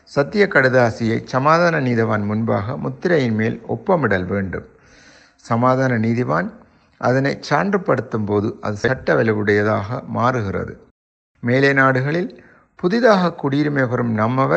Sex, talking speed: male, 90 wpm